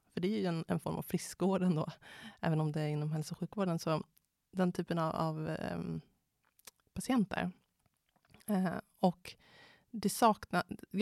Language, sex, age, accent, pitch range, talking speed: Swedish, female, 30-49, native, 155-190 Hz, 150 wpm